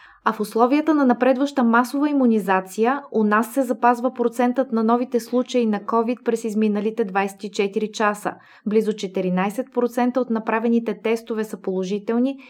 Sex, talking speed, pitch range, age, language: female, 135 wpm, 200-245 Hz, 20-39, Bulgarian